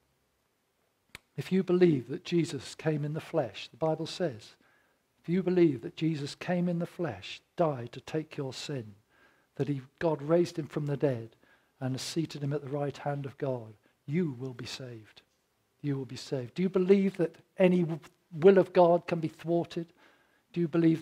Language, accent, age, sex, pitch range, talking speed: English, British, 50-69, male, 135-170 Hz, 185 wpm